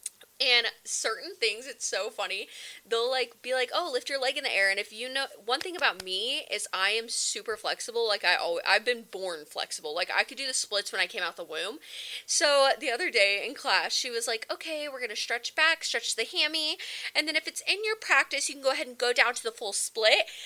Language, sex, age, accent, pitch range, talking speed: English, female, 20-39, American, 215-315 Hz, 250 wpm